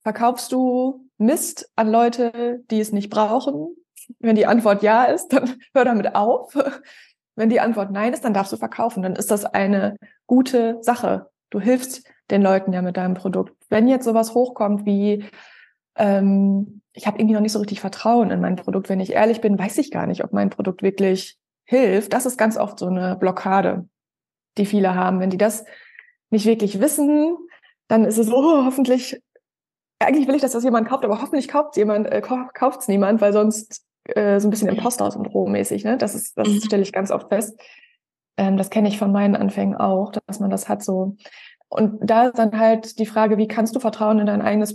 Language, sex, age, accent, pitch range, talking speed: German, female, 20-39, German, 205-245 Hz, 200 wpm